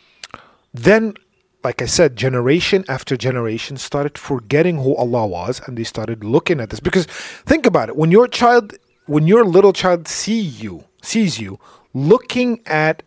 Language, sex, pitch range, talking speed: English, male, 120-160 Hz, 160 wpm